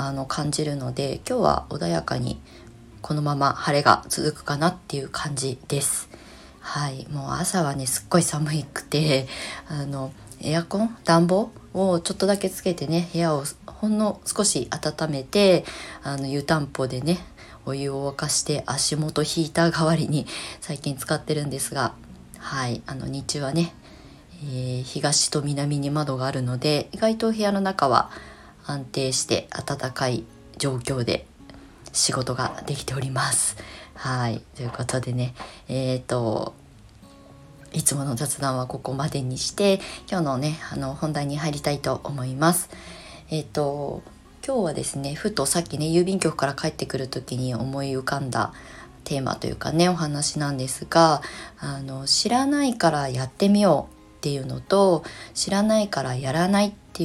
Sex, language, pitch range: female, Japanese, 130-165 Hz